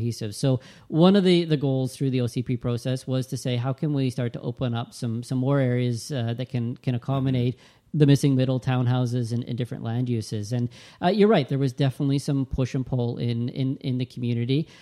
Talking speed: 220 wpm